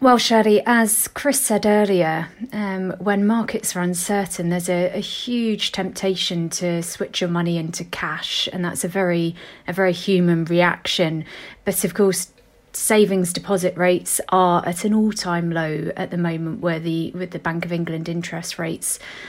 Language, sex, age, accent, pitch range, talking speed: English, female, 30-49, British, 170-190 Hz, 165 wpm